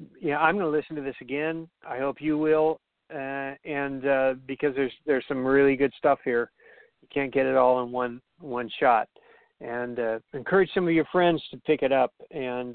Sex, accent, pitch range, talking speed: male, American, 130-160 Hz, 205 wpm